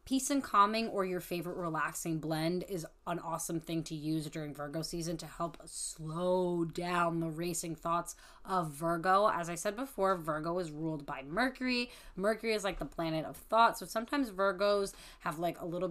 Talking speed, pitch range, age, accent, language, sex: 185 wpm, 160-195 Hz, 20-39, American, English, female